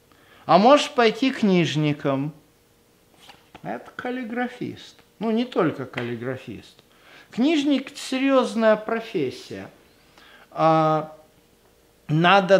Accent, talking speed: native, 70 wpm